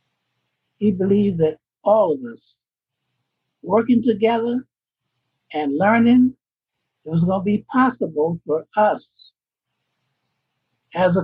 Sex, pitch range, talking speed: male, 145-205 Hz, 100 wpm